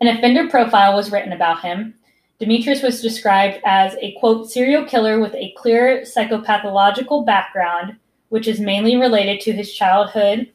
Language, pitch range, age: English, 190-235 Hz, 20-39